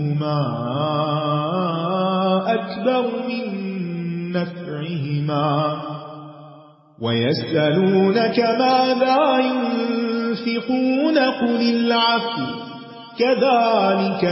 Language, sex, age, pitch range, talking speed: Urdu, male, 30-49, 170-230 Hz, 40 wpm